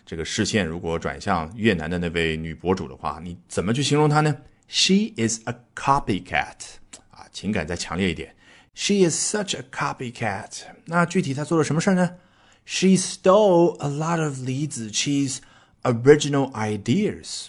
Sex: male